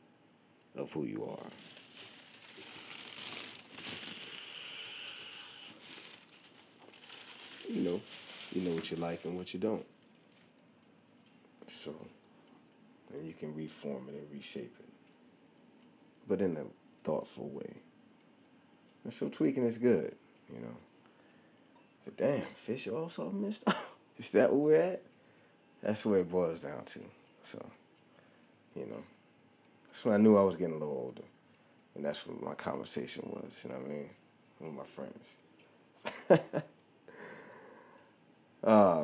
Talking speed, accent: 125 wpm, American